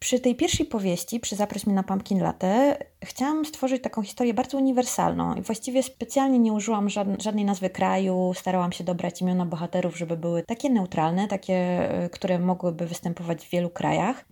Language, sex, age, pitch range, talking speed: Polish, female, 20-39, 170-210 Hz, 165 wpm